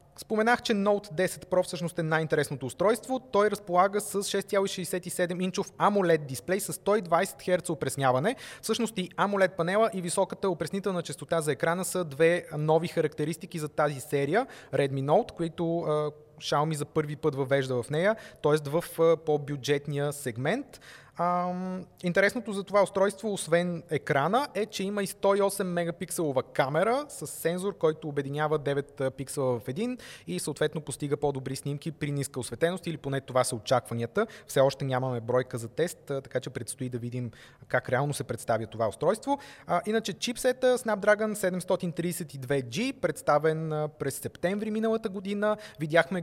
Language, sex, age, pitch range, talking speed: Bulgarian, male, 20-39, 145-195 Hz, 145 wpm